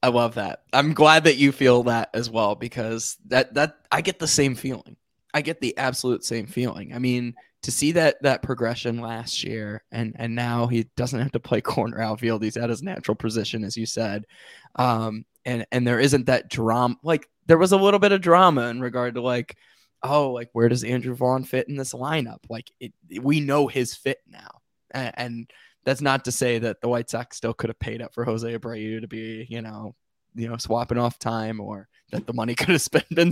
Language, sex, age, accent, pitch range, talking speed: English, male, 20-39, American, 115-135 Hz, 220 wpm